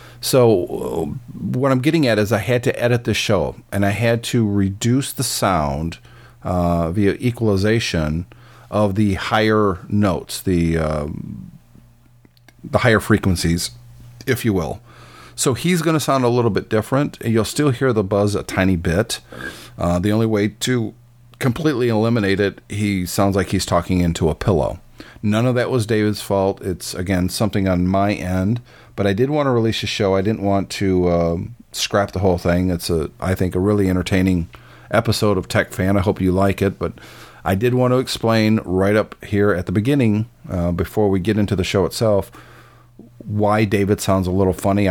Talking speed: 185 wpm